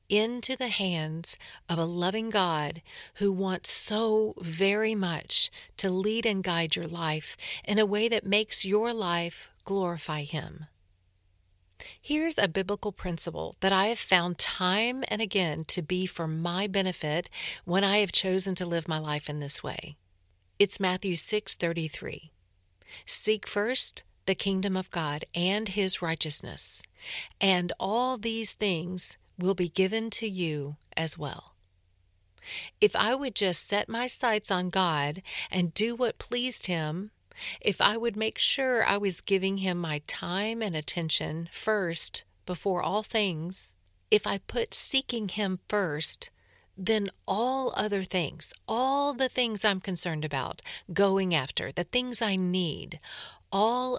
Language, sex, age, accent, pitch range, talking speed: English, female, 50-69, American, 165-215 Hz, 150 wpm